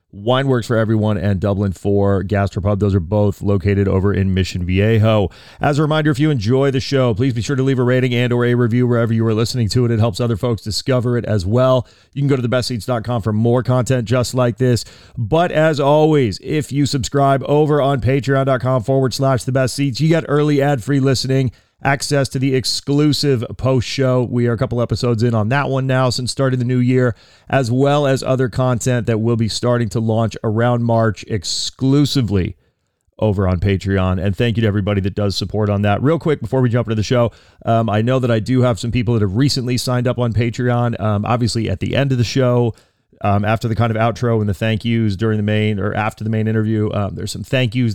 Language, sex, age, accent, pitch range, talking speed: English, male, 30-49, American, 105-130 Hz, 225 wpm